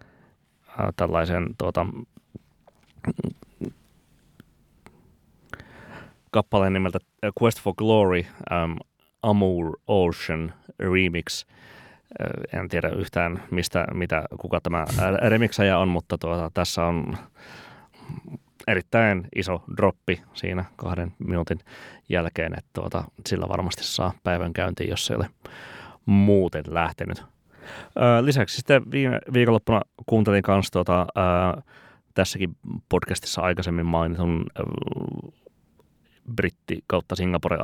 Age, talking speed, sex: 30-49, 95 wpm, male